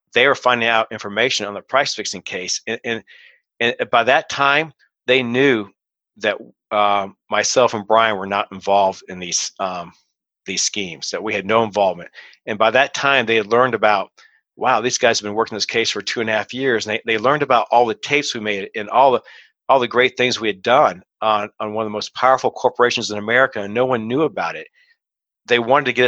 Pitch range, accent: 105-125 Hz, American